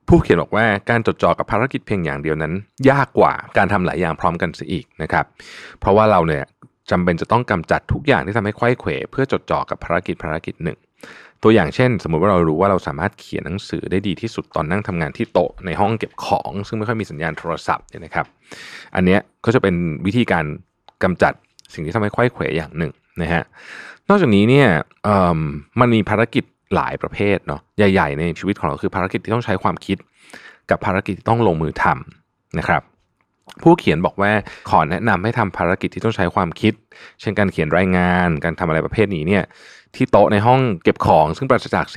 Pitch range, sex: 85-115 Hz, male